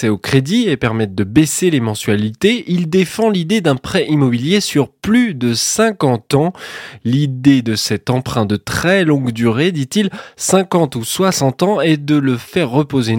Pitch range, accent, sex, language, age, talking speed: 125-170 Hz, French, male, French, 20-39, 170 wpm